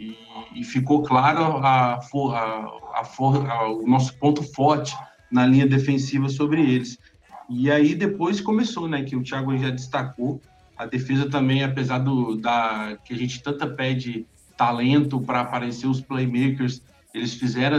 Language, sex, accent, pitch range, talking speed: Portuguese, male, Brazilian, 125-150 Hz, 155 wpm